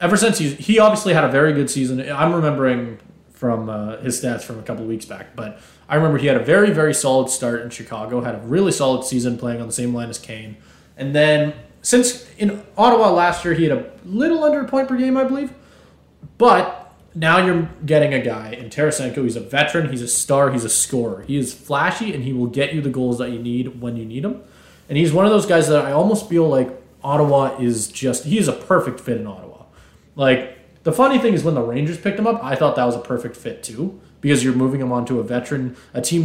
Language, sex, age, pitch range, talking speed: English, male, 20-39, 125-175 Hz, 240 wpm